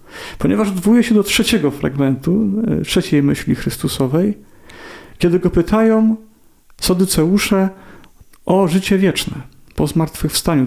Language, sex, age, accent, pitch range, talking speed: Polish, male, 40-59, native, 140-185 Hz, 100 wpm